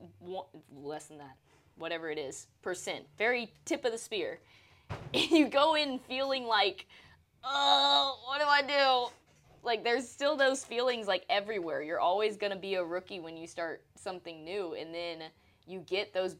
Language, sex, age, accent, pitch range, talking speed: English, female, 20-39, American, 160-230 Hz, 165 wpm